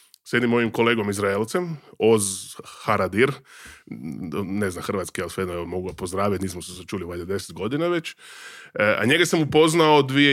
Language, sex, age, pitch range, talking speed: Croatian, male, 20-39, 100-140 Hz, 165 wpm